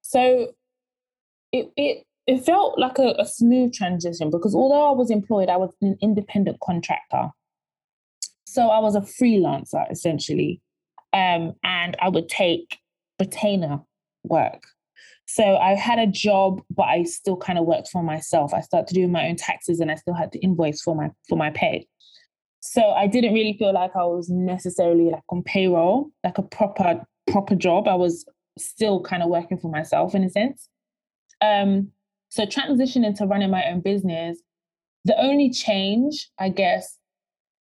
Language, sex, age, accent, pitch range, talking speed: English, female, 20-39, British, 175-215 Hz, 165 wpm